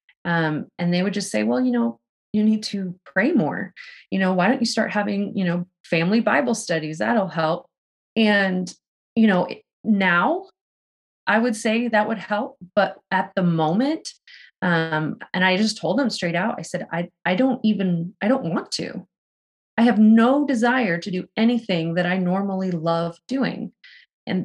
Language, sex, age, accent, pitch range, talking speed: English, female, 20-39, American, 170-210 Hz, 180 wpm